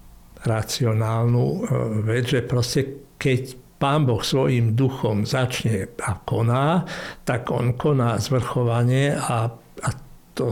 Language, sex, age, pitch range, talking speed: Czech, male, 60-79, 120-140 Hz, 110 wpm